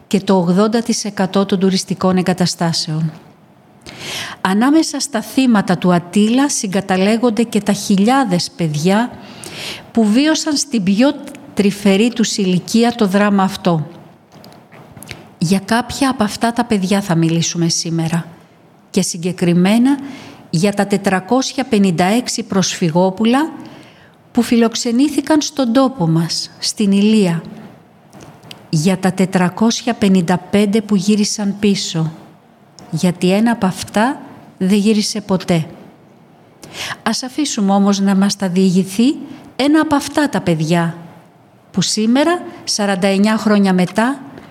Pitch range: 185-240 Hz